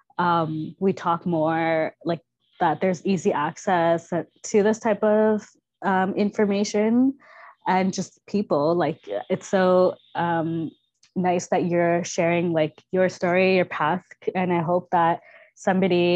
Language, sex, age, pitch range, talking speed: English, female, 20-39, 170-185 Hz, 135 wpm